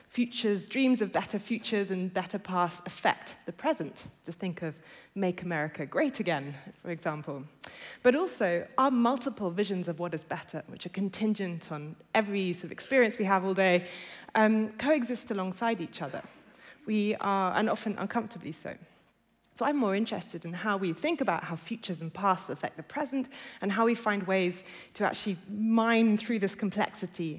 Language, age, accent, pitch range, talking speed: English, 30-49, British, 175-225 Hz, 175 wpm